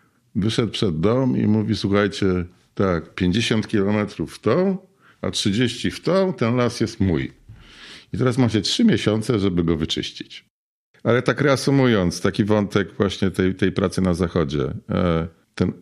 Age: 50-69